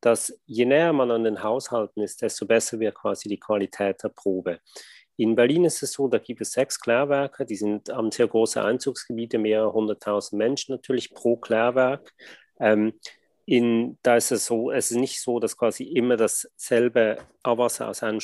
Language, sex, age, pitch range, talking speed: German, male, 40-59, 105-120 Hz, 180 wpm